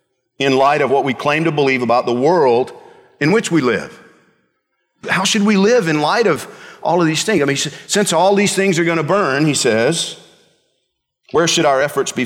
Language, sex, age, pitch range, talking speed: English, male, 50-69, 105-160 Hz, 205 wpm